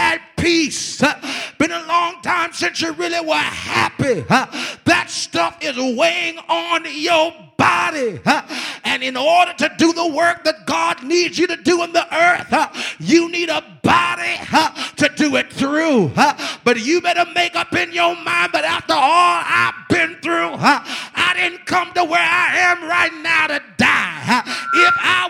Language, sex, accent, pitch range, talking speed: English, male, American, 275-350 Hz, 160 wpm